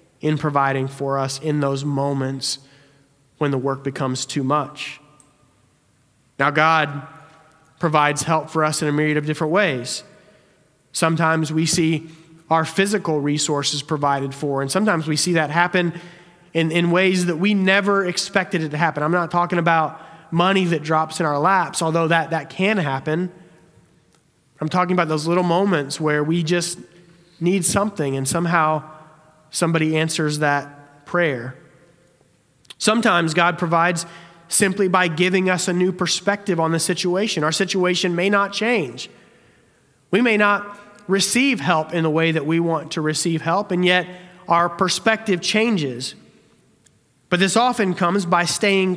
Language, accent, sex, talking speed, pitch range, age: English, American, male, 150 wpm, 150-180 Hz, 30-49